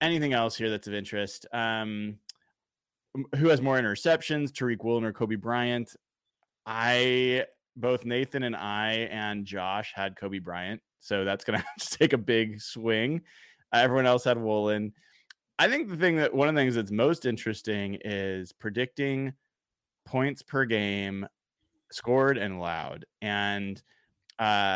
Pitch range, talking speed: 100-130 Hz, 145 wpm